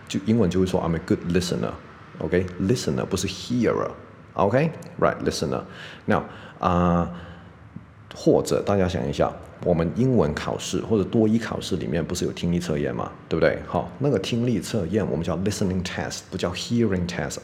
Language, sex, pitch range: Chinese, male, 80-100 Hz